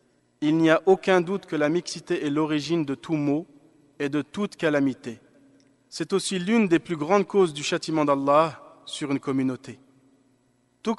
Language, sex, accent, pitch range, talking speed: French, male, French, 145-175 Hz, 170 wpm